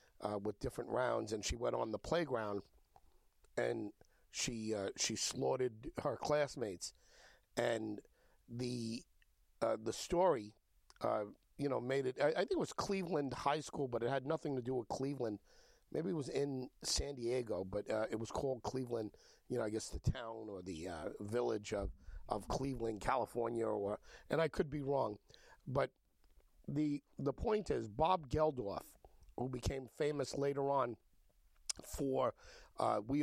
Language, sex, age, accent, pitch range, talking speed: English, male, 50-69, American, 105-135 Hz, 165 wpm